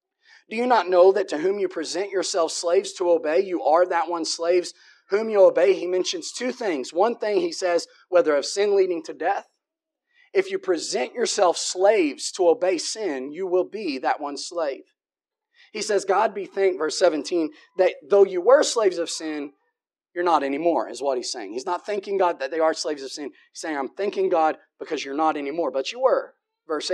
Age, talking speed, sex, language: 30-49, 205 wpm, male, English